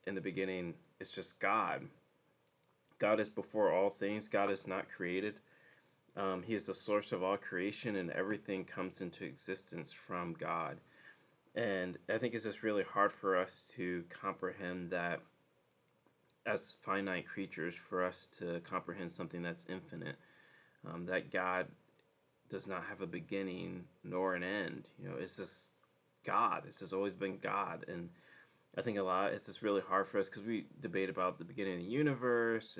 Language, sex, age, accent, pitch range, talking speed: English, male, 30-49, American, 90-105 Hz, 170 wpm